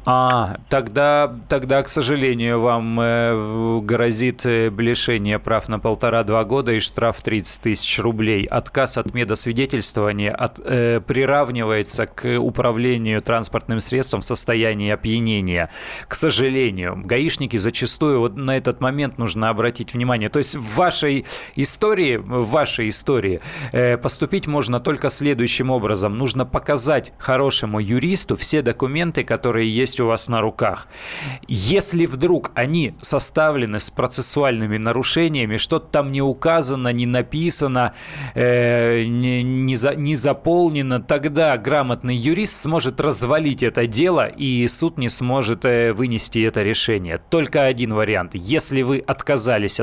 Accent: native